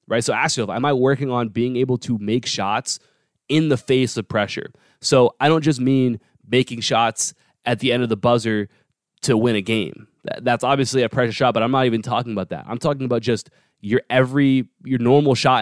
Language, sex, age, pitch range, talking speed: English, male, 20-39, 115-135 Hz, 215 wpm